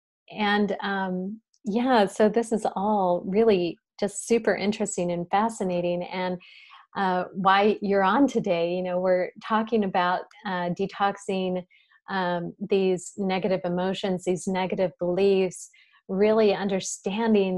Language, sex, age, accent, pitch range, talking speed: English, female, 30-49, American, 170-200 Hz, 120 wpm